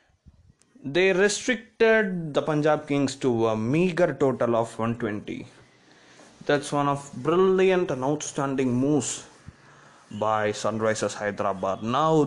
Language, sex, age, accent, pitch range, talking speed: English, male, 20-39, Indian, 120-160 Hz, 110 wpm